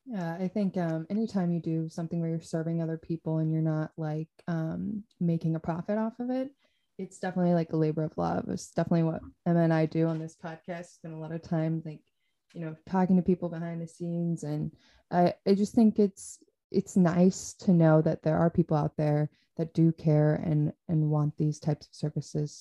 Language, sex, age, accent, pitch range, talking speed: English, female, 20-39, American, 155-175 Hz, 220 wpm